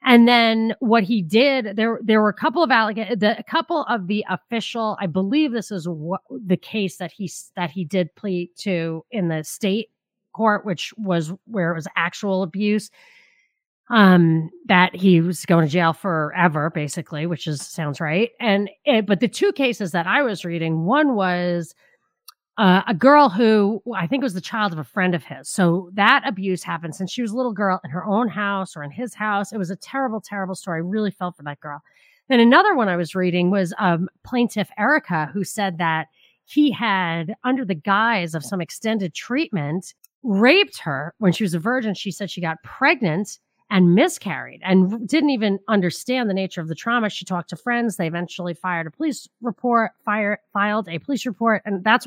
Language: English